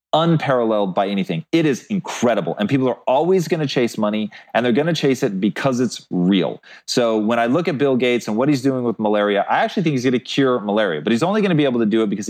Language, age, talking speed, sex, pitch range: English, 30-49, 270 wpm, male, 115-175 Hz